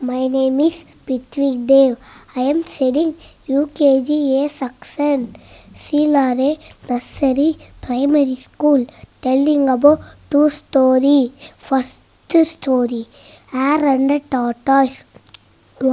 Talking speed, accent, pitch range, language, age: 90 wpm, native, 260-310 Hz, Tamil, 20-39